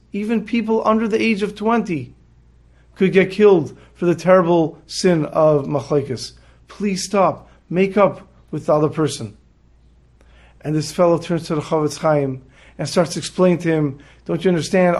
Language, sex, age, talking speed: English, male, 40-59, 165 wpm